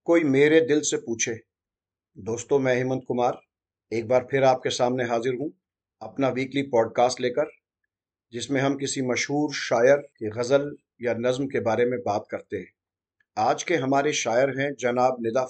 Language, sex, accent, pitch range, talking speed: Hindi, male, native, 125-145 Hz, 165 wpm